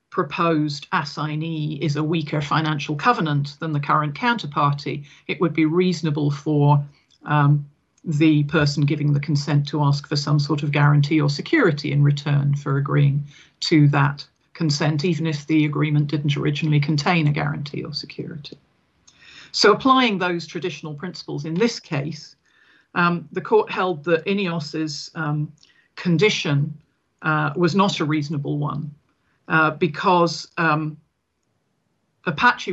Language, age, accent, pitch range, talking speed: English, 40-59, British, 145-165 Hz, 140 wpm